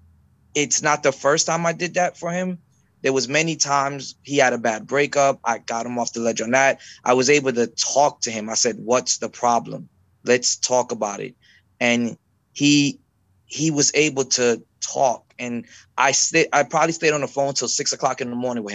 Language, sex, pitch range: English, male, 115-145 Hz